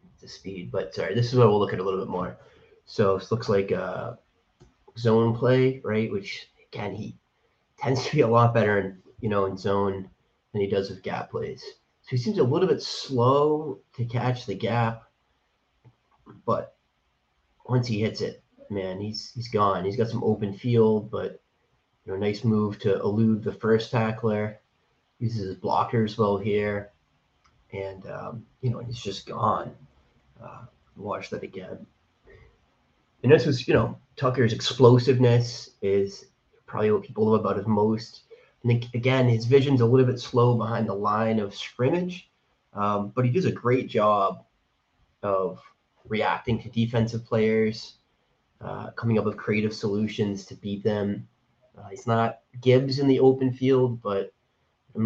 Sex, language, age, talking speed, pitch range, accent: male, English, 30-49, 165 wpm, 105-125 Hz, American